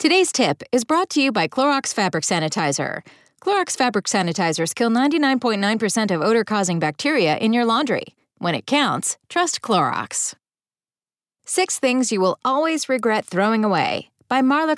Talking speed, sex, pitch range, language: 145 wpm, female, 190-285 Hz, English